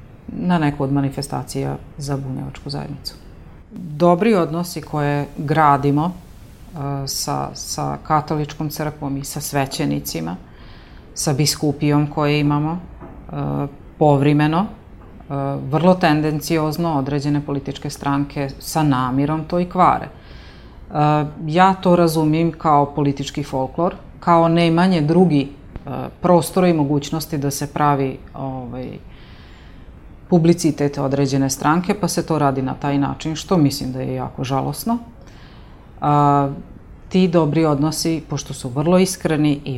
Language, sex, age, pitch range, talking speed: Croatian, female, 40-59, 135-160 Hz, 110 wpm